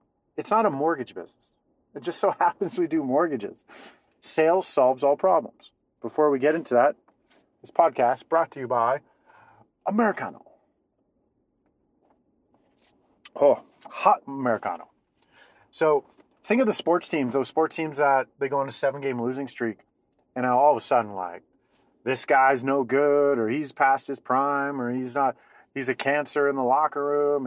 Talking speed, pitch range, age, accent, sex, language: 155 wpm, 130-170 Hz, 40-59, American, male, English